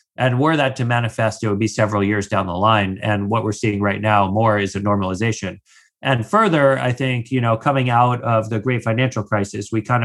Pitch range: 105-130 Hz